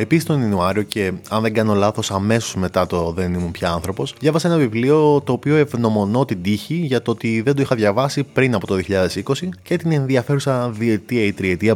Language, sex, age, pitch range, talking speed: Greek, male, 20-39, 100-135 Hz, 205 wpm